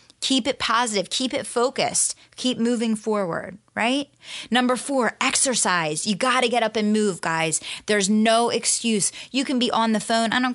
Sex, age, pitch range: female, 20-39, 185-225 Hz